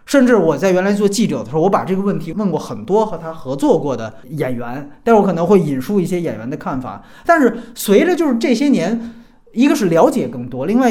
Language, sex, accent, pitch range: Chinese, male, native, 160-250 Hz